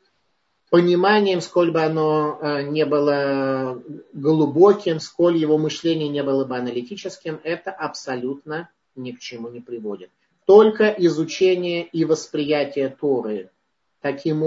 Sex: male